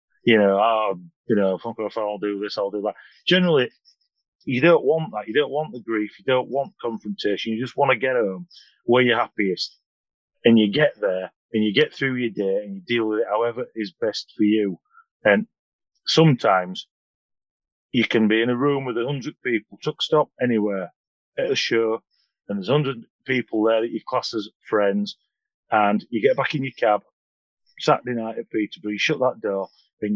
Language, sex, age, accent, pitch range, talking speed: English, male, 30-49, British, 105-140 Hz, 195 wpm